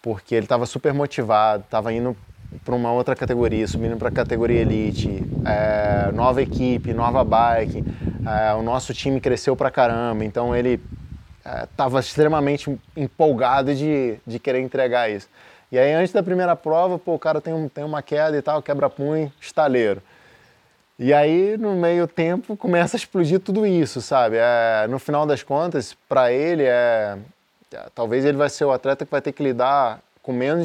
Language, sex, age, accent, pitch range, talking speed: Portuguese, male, 20-39, Brazilian, 120-155 Hz, 175 wpm